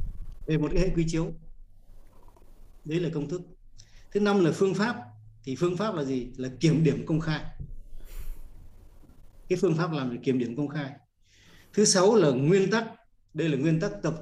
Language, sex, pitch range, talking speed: Vietnamese, male, 105-170 Hz, 180 wpm